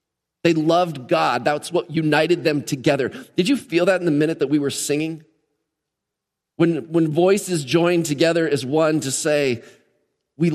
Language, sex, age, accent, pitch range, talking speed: English, male, 40-59, American, 130-170 Hz, 165 wpm